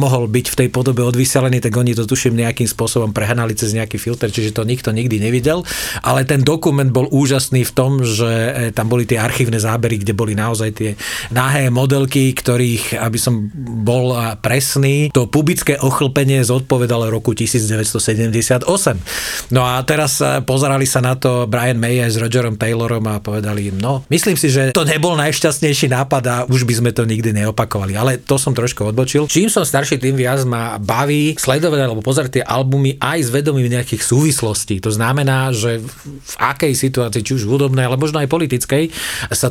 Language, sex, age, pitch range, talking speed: Slovak, male, 40-59, 115-135 Hz, 175 wpm